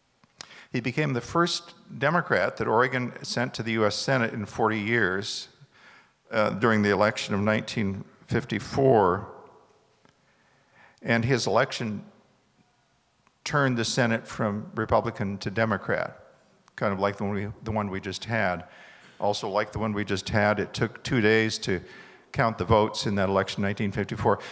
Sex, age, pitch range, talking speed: male, 50-69, 105-120 Hz, 150 wpm